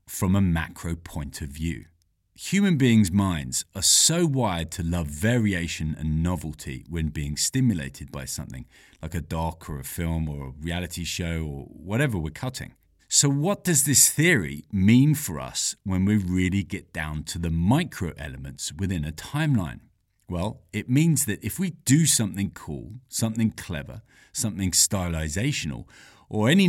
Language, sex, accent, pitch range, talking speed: English, male, British, 80-115 Hz, 155 wpm